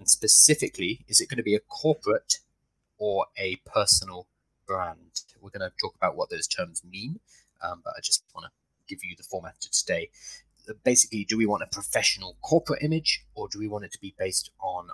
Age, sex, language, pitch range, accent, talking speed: 20-39, male, English, 90-130 Hz, British, 200 wpm